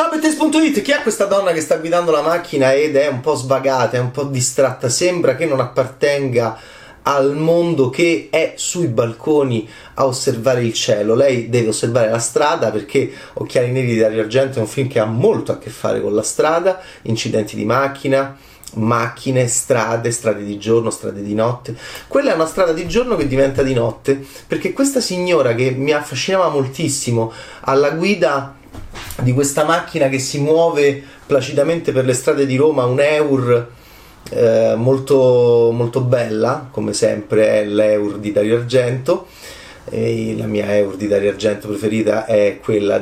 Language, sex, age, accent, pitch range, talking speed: Italian, male, 30-49, native, 110-145 Hz, 170 wpm